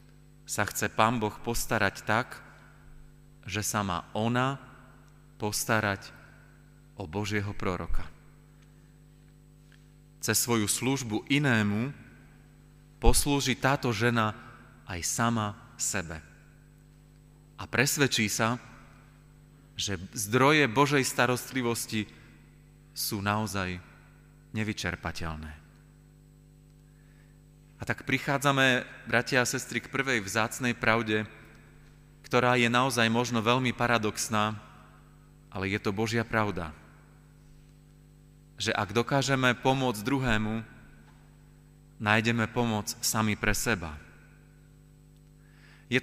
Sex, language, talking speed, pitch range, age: male, Slovak, 85 wpm, 110-145 Hz, 30-49